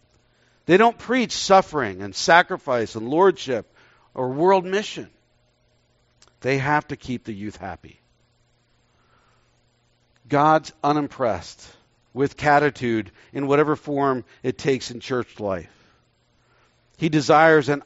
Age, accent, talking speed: 50-69, American, 110 wpm